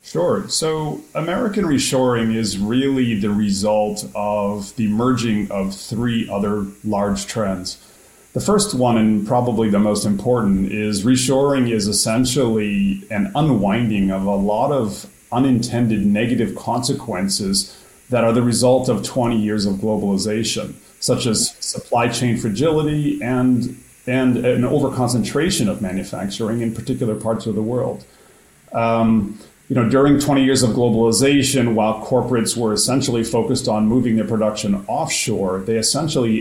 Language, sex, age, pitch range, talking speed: English, male, 30-49, 105-130 Hz, 135 wpm